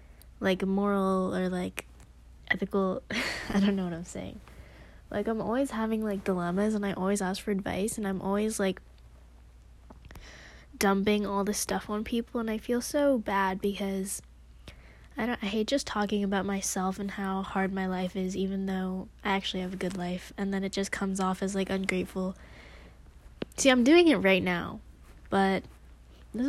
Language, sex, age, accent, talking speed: English, female, 10-29, American, 175 wpm